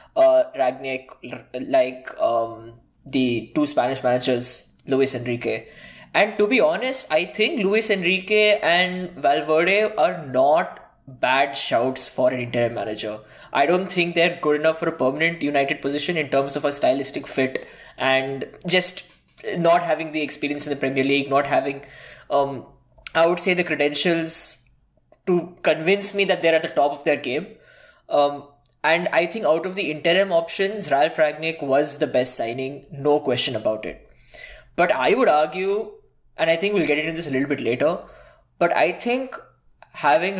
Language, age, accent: English, 20-39, Indian